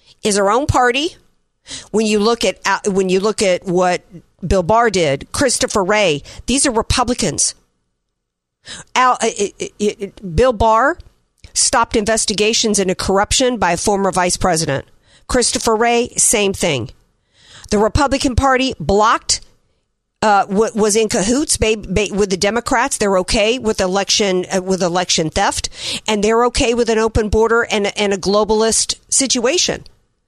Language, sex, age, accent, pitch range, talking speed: English, female, 50-69, American, 195-250 Hz, 140 wpm